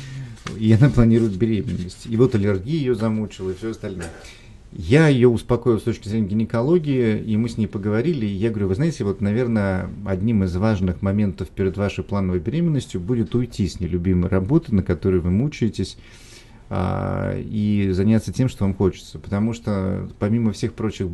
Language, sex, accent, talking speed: Russian, male, native, 170 wpm